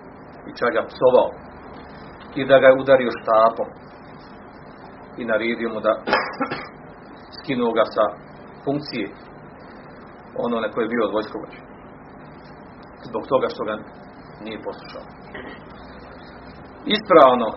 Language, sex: Croatian, male